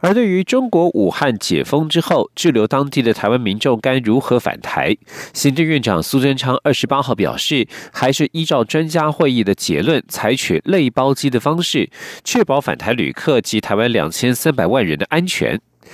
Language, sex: German, male